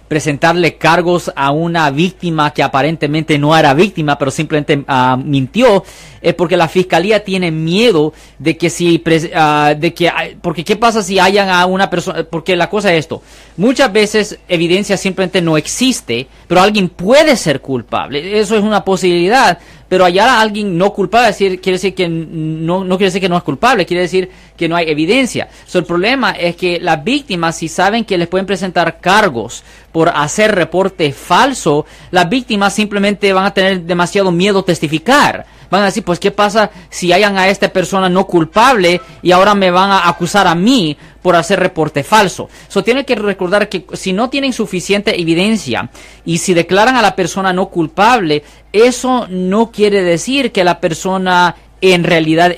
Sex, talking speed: male, 180 wpm